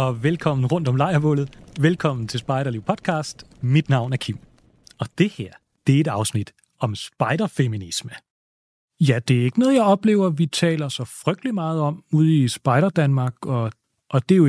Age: 30-49